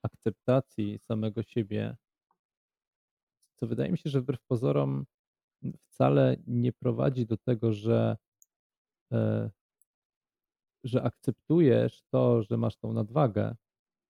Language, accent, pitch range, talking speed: Polish, native, 110-125 Hz, 100 wpm